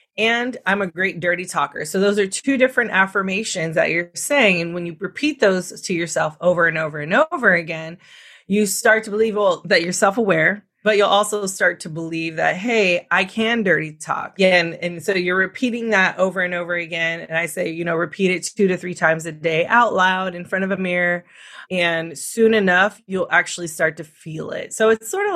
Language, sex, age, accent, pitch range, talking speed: English, female, 30-49, American, 170-210 Hz, 215 wpm